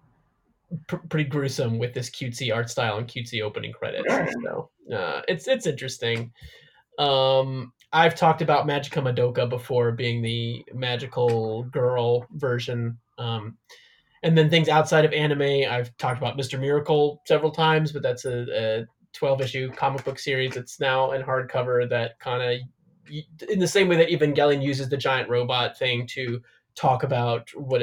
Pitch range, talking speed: 120-150 Hz, 155 wpm